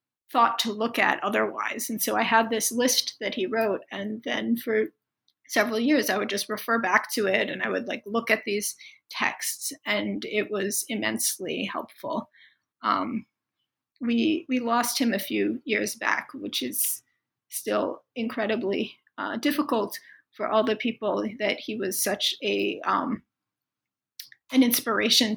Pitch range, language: 210-260 Hz, English